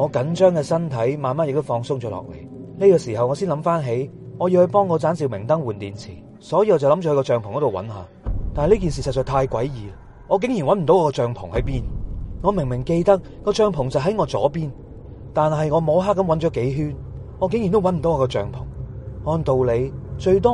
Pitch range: 115-170 Hz